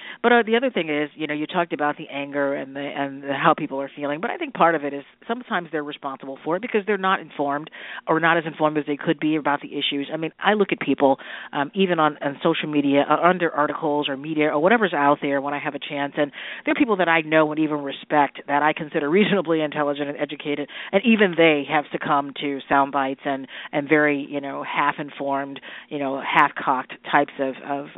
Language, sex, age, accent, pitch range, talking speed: English, female, 40-59, American, 140-165 Hz, 235 wpm